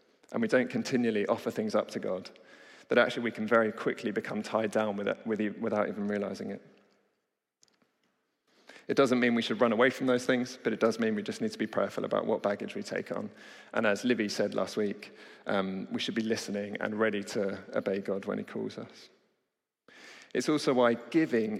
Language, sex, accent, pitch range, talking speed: English, male, British, 100-115 Hz, 200 wpm